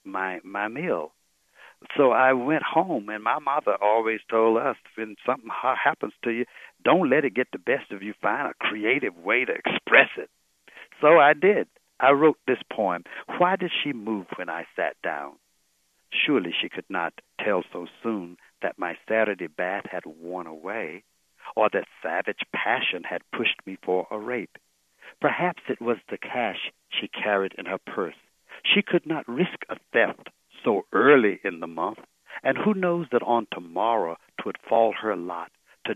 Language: English